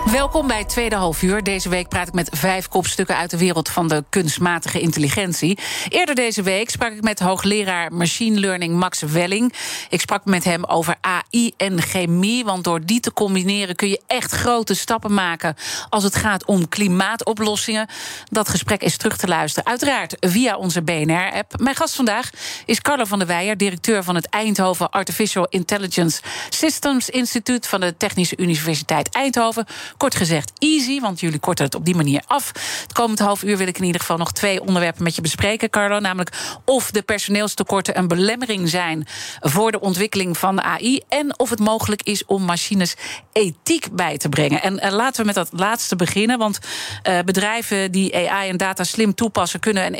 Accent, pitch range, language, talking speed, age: Dutch, 180-220 Hz, Dutch, 185 wpm, 40-59